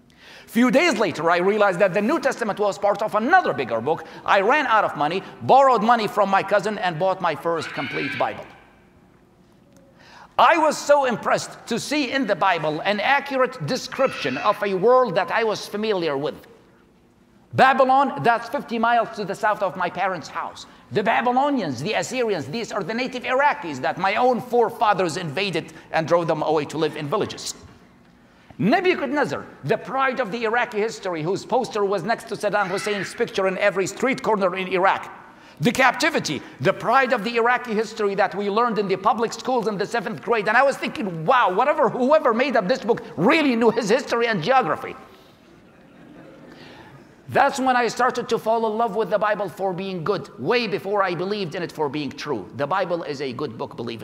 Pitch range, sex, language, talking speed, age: 190-250 Hz, male, English, 190 wpm, 50-69